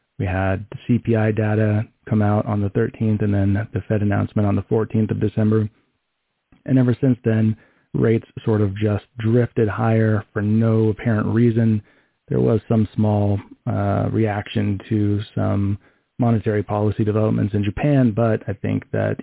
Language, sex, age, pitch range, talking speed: English, male, 30-49, 105-120 Hz, 155 wpm